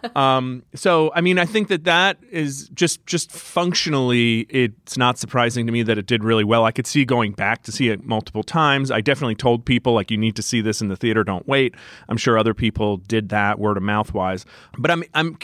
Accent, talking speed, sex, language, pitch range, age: American, 235 wpm, male, English, 110-140 Hz, 40-59